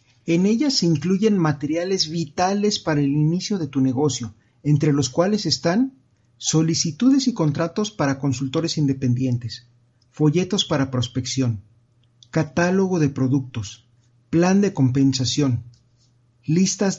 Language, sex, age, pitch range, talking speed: Spanish, male, 40-59, 130-180 Hz, 115 wpm